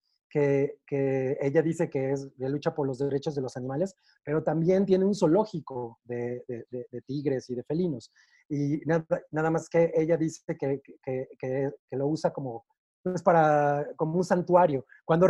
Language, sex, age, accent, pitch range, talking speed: Spanish, male, 30-49, Mexican, 145-195 Hz, 185 wpm